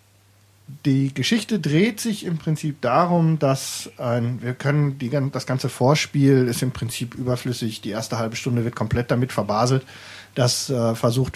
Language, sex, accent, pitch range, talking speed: German, male, German, 125-165 Hz, 155 wpm